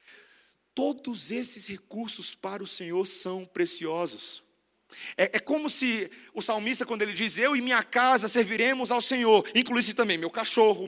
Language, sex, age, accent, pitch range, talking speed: Portuguese, male, 40-59, Brazilian, 145-235 Hz, 155 wpm